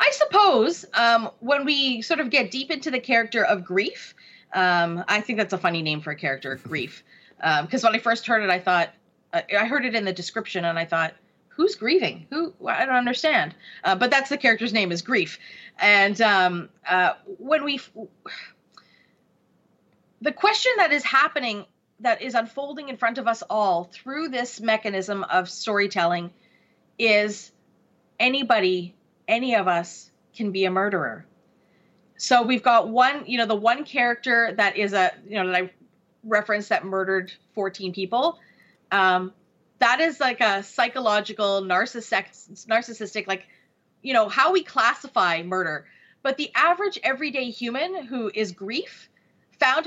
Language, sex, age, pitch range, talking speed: English, female, 30-49, 190-265 Hz, 160 wpm